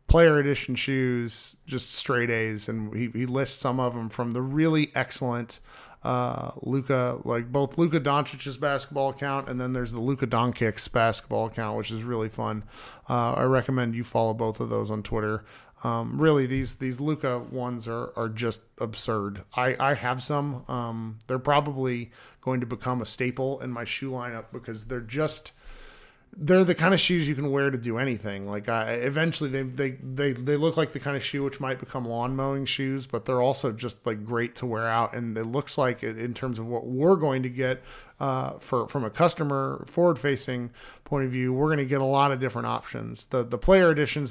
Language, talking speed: English, 205 wpm